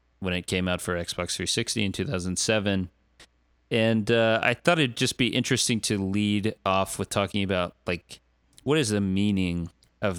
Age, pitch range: 20-39, 85-100 Hz